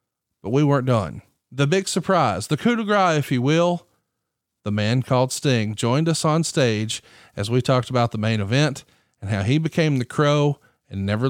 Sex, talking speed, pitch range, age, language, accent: male, 195 wpm, 115-165 Hz, 40-59, English, American